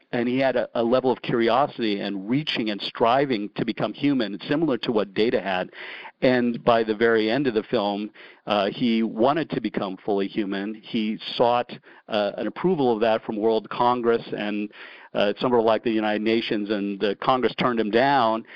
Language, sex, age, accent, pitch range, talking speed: English, male, 50-69, American, 105-120 Hz, 190 wpm